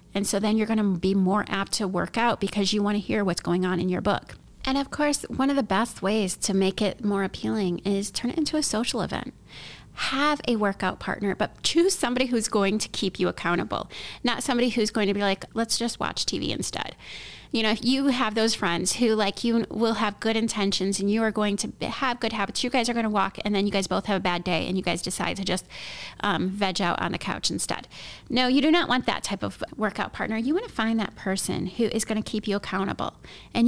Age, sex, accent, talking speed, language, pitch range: 30-49, female, American, 250 wpm, English, 195-240 Hz